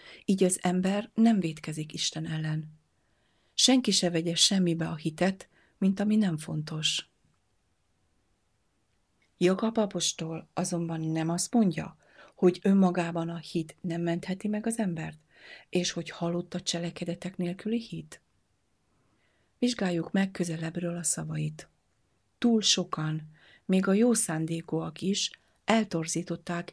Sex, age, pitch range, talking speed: female, 40-59, 160-190 Hz, 120 wpm